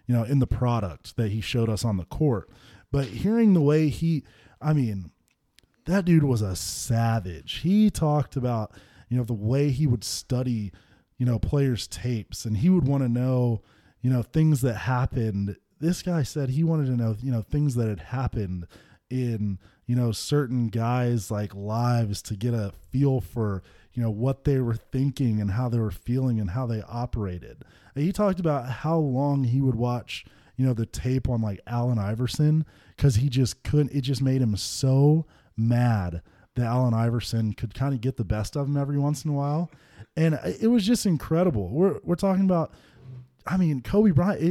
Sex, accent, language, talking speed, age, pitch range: male, American, English, 195 wpm, 20-39, 110-145 Hz